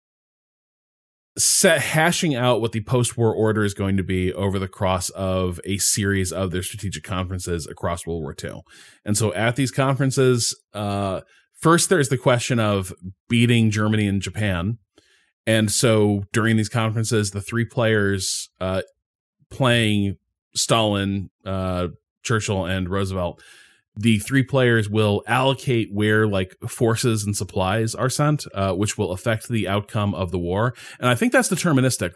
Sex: male